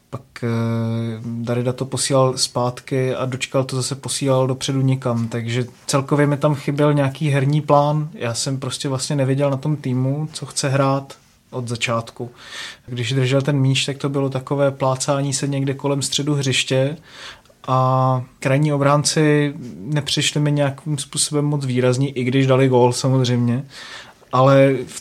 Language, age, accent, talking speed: Czech, 20-39, native, 150 wpm